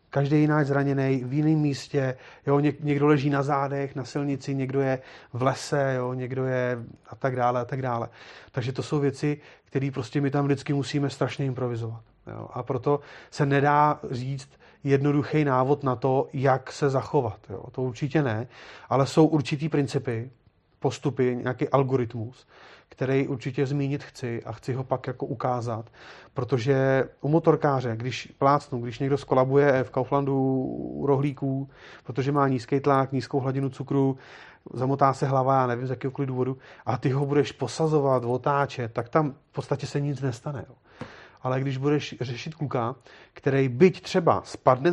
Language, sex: Czech, male